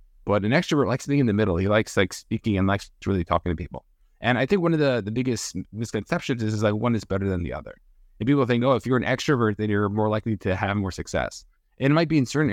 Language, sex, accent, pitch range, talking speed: English, male, American, 95-125 Hz, 285 wpm